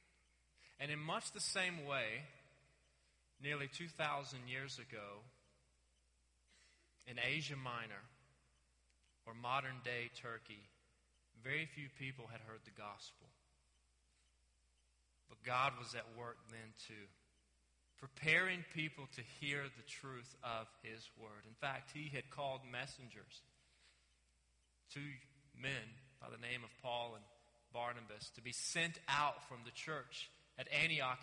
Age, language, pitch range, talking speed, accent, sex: 30-49, English, 105-135 Hz, 125 wpm, American, male